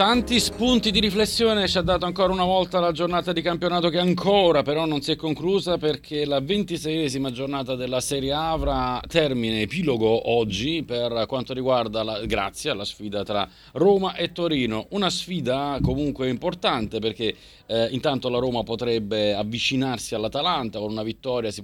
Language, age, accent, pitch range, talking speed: Italian, 30-49, native, 110-150 Hz, 160 wpm